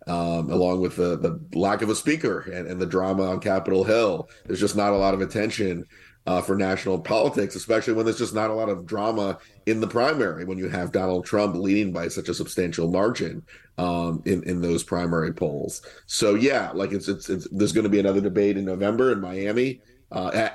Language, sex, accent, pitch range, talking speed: English, male, American, 90-100 Hz, 215 wpm